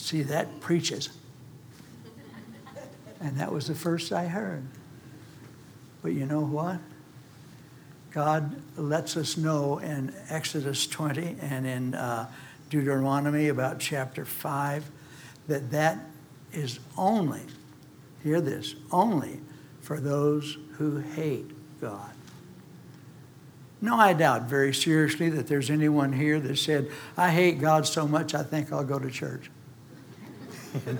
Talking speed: 120 wpm